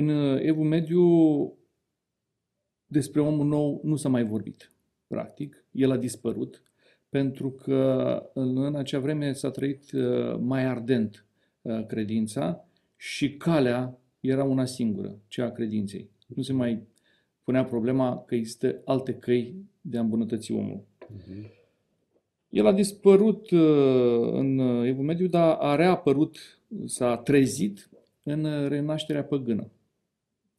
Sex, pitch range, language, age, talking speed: male, 120-150 Hz, Romanian, 40-59, 115 wpm